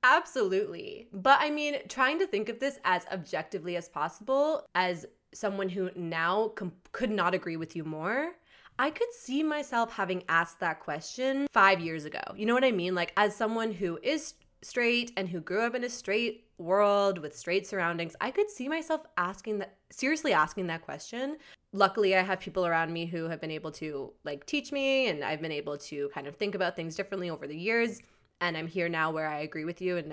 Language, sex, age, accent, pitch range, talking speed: English, female, 20-39, American, 170-255 Hz, 205 wpm